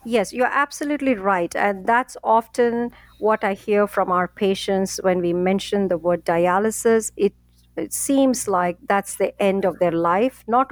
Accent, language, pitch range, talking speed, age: Indian, English, 195-240 Hz, 170 wpm, 50-69